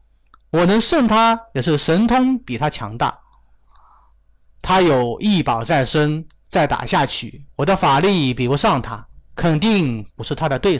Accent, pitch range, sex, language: native, 140-235 Hz, male, Chinese